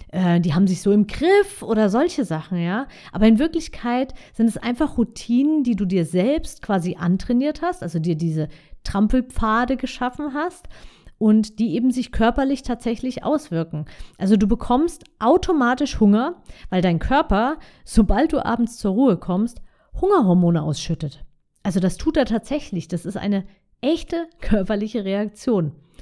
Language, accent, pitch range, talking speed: German, German, 175-255 Hz, 150 wpm